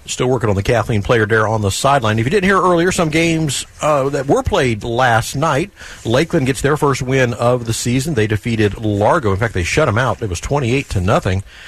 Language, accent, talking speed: English, American, 230 wpm